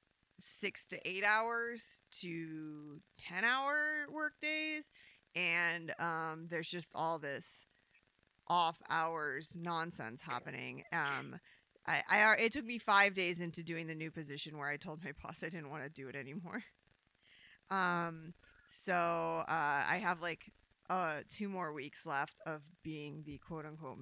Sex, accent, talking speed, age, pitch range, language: female, American, 145 wpm, 30-49, 150-185 Hz, English